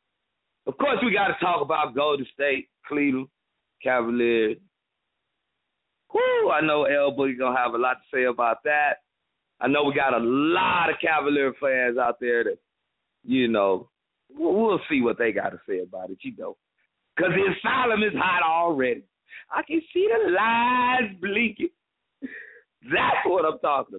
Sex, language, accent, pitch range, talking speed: male, English, American, 120-195 Hz, 165 wpm